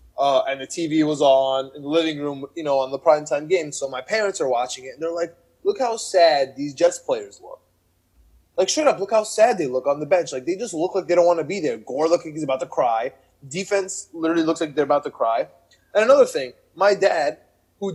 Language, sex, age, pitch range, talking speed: English, male, 20-39, 150-205 Hz, 245 wpm